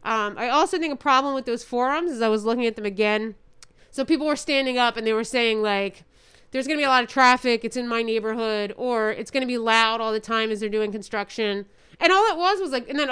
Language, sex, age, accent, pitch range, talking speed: English, female, 30-49, American, 215-265 Hz, 270 wpm